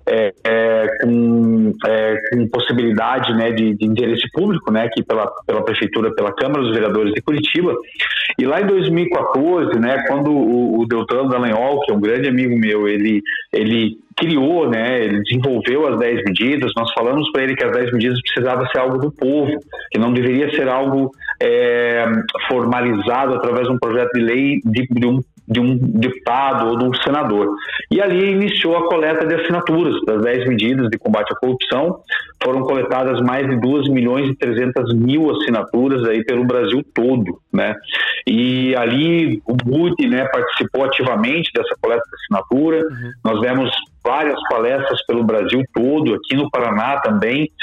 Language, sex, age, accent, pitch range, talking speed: Portuguese, male, 40-59, Brazilian, 115-150 Hz, 170 wpm